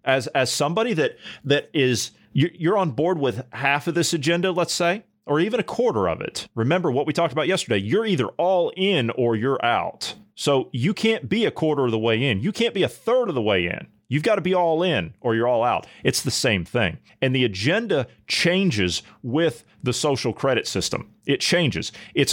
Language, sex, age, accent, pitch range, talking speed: English, male, 40-59, American, 115-170 Hz, 215 wpm